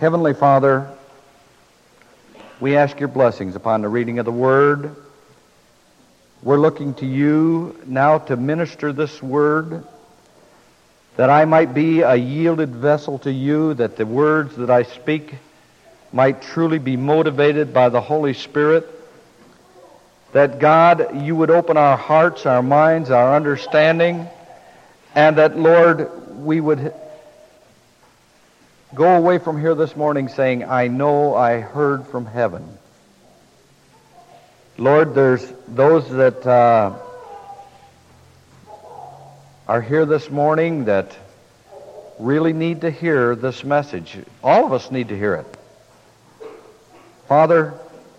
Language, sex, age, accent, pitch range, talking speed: English, male, 60-79, American, 130-160 Hz, 120 wpm